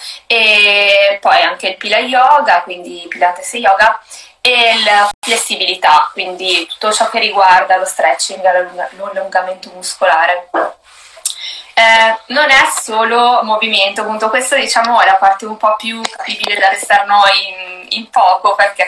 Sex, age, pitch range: female, 20-39, 190-225 Hz